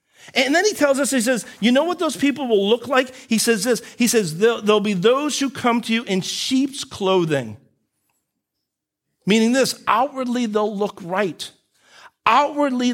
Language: English